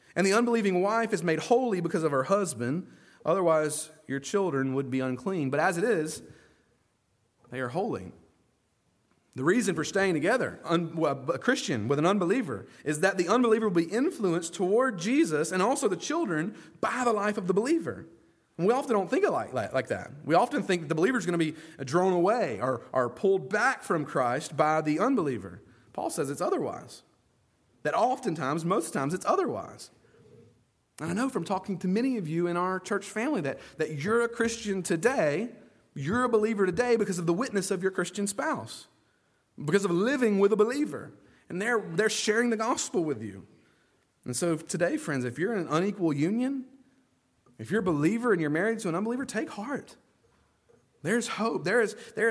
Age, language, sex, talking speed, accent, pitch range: 30-49, English, male, 190 wpm, American, 170-230 Hz